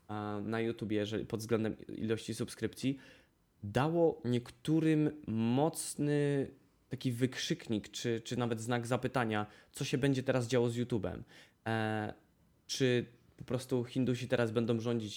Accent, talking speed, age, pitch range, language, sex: native, 125 wpm, 20-39, 105-125 Hz, Polish, male